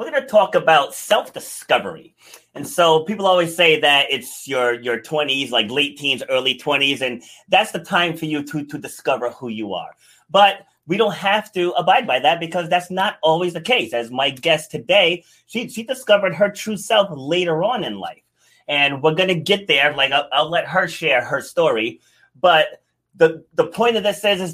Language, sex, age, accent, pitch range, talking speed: English, male, 30-49, American, 145-185 Hz, 205 wpm